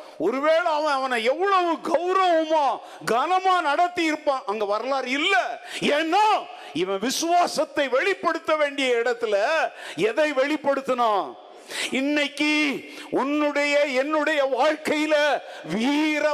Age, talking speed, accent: 50-69, 50 wpm, native